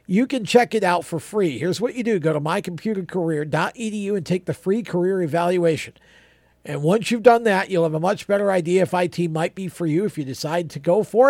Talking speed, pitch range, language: 230 wpm, 155-200 Hz, English